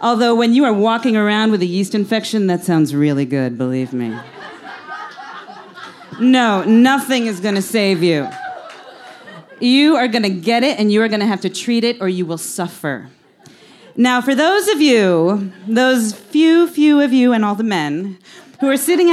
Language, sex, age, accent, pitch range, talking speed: English, female, 40-59, American, 190-280 Hz, 175 wpm